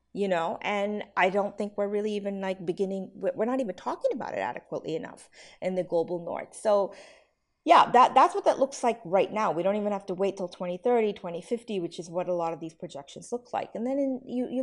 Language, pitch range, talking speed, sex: English, 185-255 Hz, 225 wpm, female